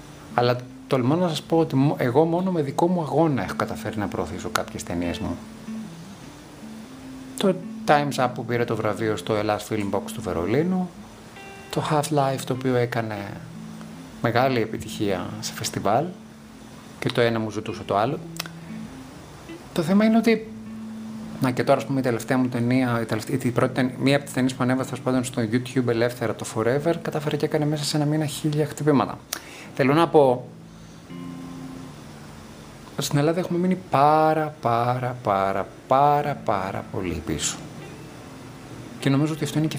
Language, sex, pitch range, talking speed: Greek, male, 115-155 Hz, 155 wpm